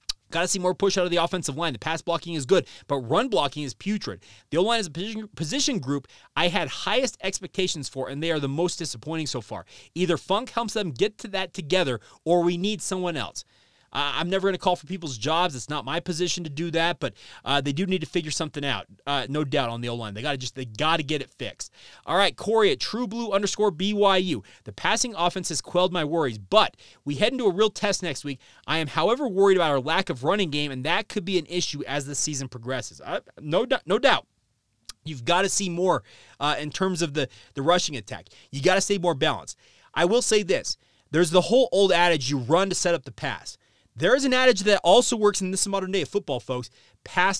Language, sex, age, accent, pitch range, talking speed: English, male, 30-49, American, 140-190 Hz, 240 wpm